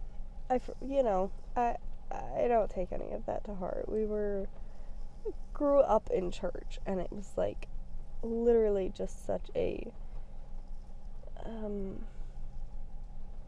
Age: 20-39